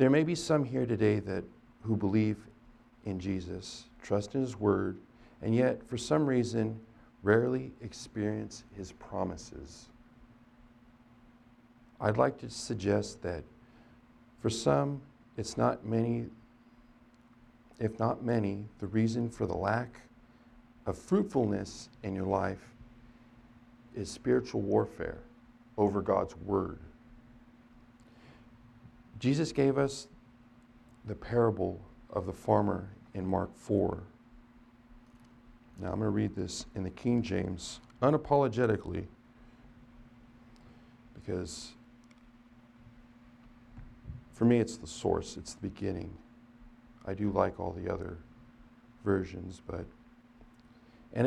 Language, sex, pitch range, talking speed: English, male, 105-120 Hz, 110 wpm